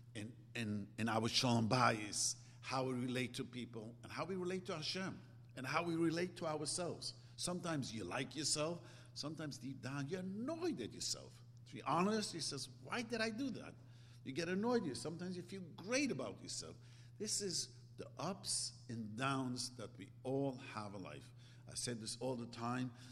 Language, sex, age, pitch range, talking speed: English, male, 50-69, 115-135 Hz, 185 wpm